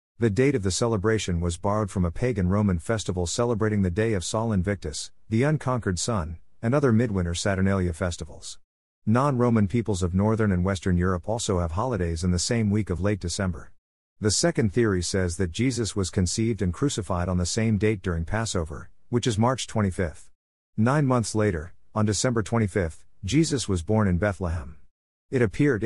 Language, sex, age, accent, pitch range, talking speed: English, male, 50-69, American, 90-115 Hz, 175 wpm